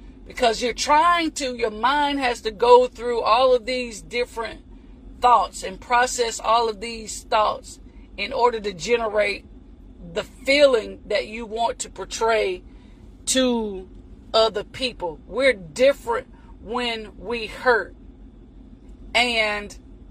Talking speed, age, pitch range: 120 wpm, 40-59, 235-285 Hz